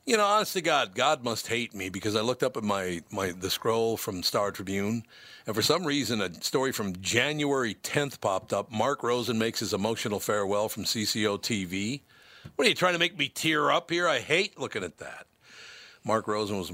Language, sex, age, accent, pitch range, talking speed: English, male, 50-69, American, 95-115 Hz, 210 wpm